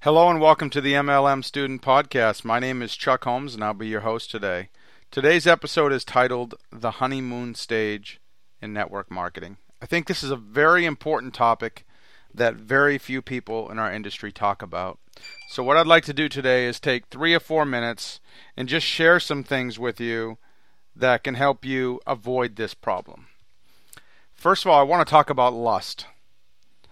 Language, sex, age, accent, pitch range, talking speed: English, male, 40-59, American, 110-140 Hz, 185 wpm